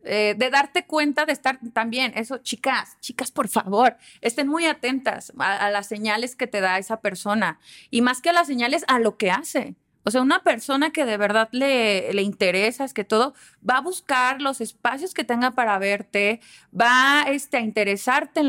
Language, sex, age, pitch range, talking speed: Spanish, female, 30-49, 210-275 Hz, 200 wpm